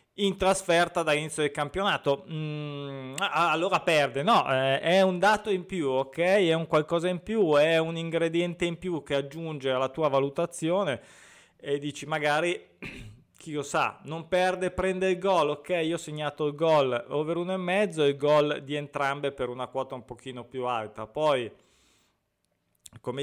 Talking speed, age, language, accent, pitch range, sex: 165 wpm, 20-39, Italian, native, 125-165 Hz, male